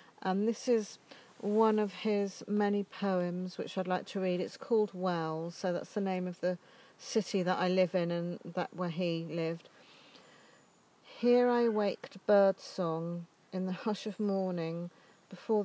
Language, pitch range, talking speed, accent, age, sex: English, 180-215 Hz, 160 wpm, British, 50-69, female